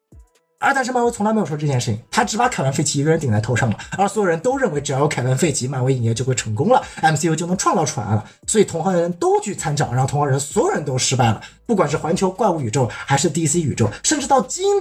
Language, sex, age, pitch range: Chinese, male, 20-39, 140-205 Hz